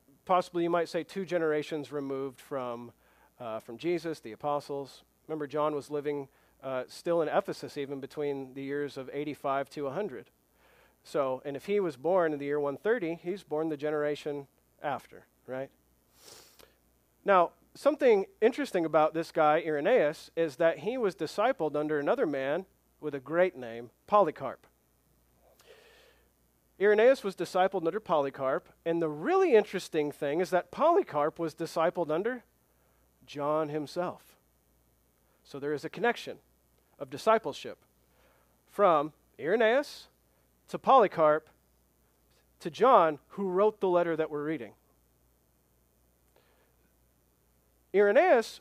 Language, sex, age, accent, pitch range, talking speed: English, male, 40-59, American, 115-180 Hz, 130 wpm